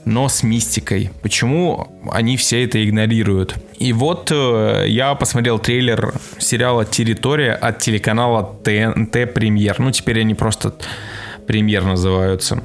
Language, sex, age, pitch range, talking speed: Russian, male, 20-39, 105-125 Hz, 125 wpm